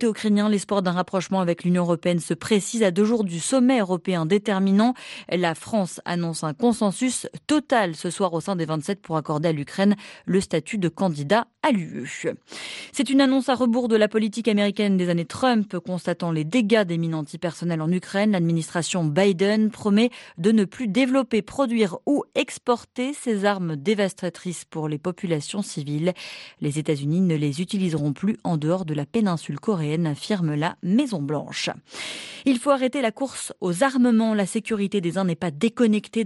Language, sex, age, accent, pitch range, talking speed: French, female, 30-49, French, 170-220 Hz, 170 wpm